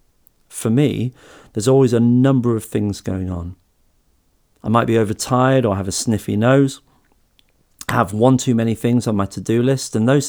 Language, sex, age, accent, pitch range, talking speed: English, male, 40-59, British, 105-130 Hz, 175 wpm